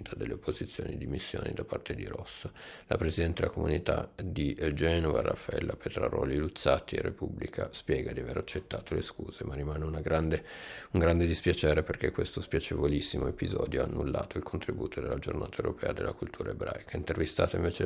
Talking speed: 160 wpm